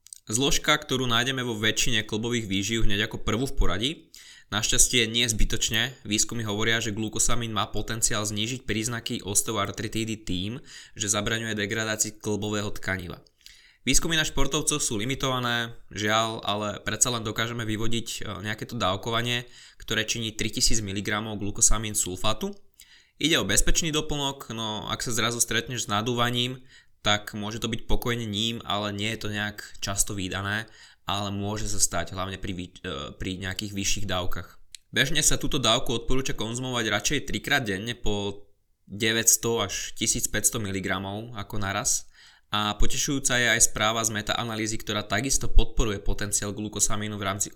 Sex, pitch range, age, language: male, 100-120 Hz, 20-39, Slovak